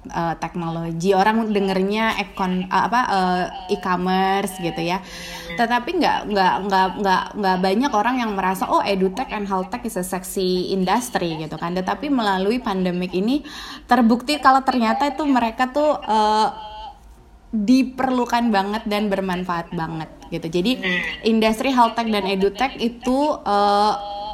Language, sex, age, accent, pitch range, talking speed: Indonesian, female, 20-39, native, 190-240 Hz, 130 wpm